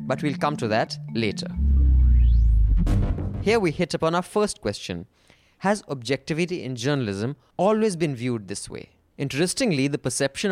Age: 20-39